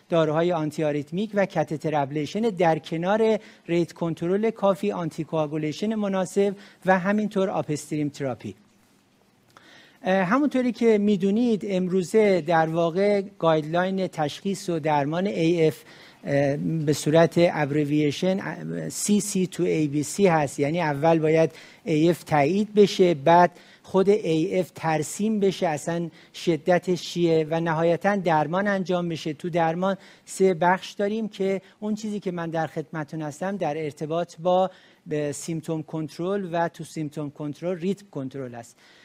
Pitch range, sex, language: 160-195 Hz, male, Persian